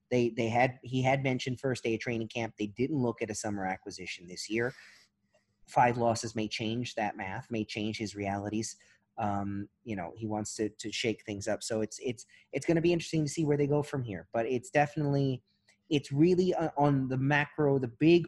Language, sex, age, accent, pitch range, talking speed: English, male, 30-49, American, 110-150 Hz, 215 wpm